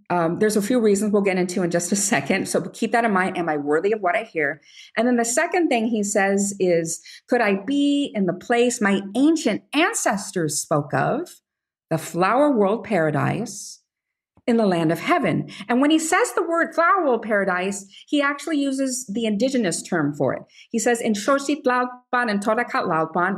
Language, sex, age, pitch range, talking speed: English, female, 50-69, 180-250 Hz, 185 wpm